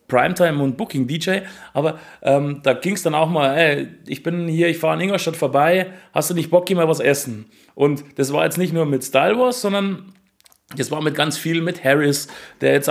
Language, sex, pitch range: German, male, 145-180 Hz